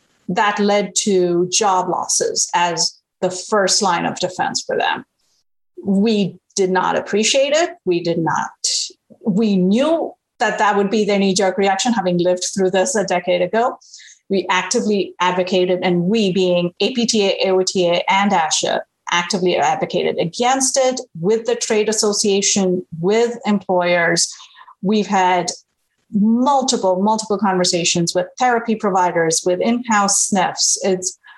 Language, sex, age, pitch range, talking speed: English, female, 30-49, 185-230 Hz, 130 wpm